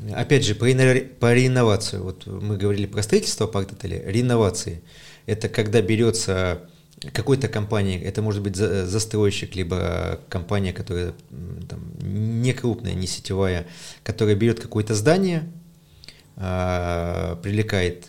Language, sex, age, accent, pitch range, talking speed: Russian, male, 30-49, native, 95-115 Hz, 120 wpm